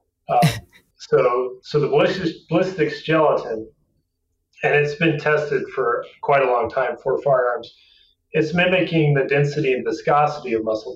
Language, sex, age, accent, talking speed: English, male, 30-49, American, 135 wpm